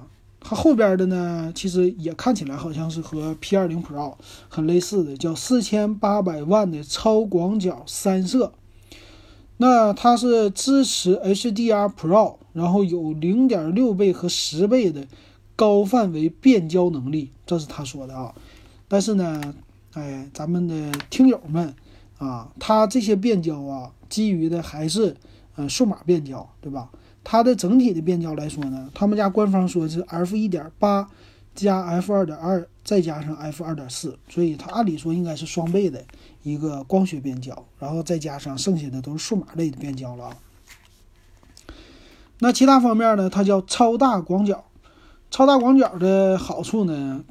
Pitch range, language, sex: 145-200 Hz, Chinese, male